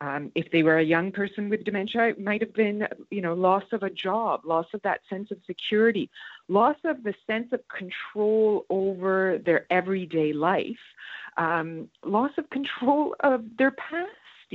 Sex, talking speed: female, 175 wpm